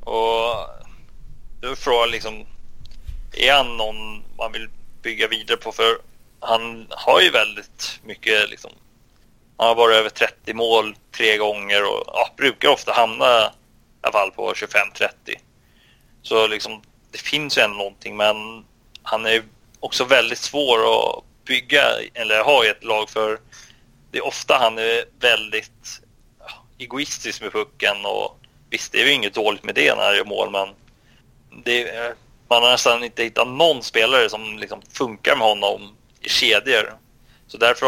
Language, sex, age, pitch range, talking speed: Swedish, male, 30-49, 105-115 Hz, 160 wpm